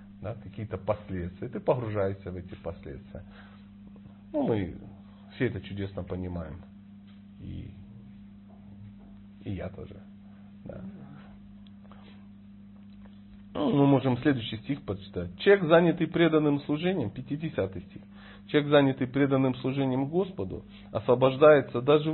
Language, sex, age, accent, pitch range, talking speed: Russian, male, 40-59, native, 100-130 Hz, 105 wpm